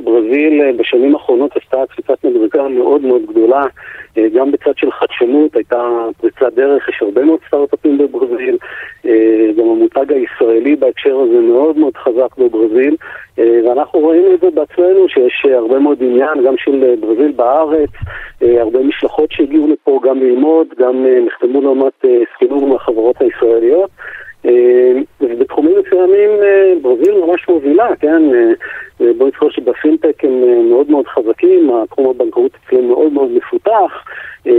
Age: 40-59